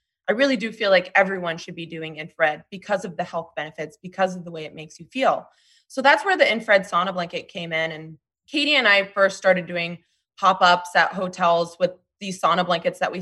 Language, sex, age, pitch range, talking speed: English, female, 20-39, 170-215 Hz, 220 wpm